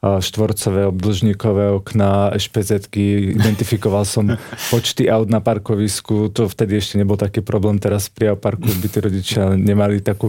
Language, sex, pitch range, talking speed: Slovak, male, 100-110 Hz, 140 wpm